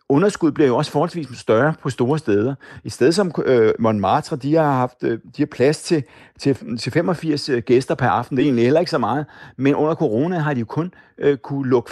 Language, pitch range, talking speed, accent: Danish, 120-155 Hz, 220 wpm, native